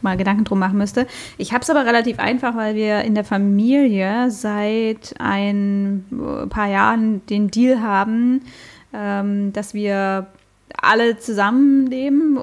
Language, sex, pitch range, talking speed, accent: German, female, 200-240 Hz, 140 wpm, German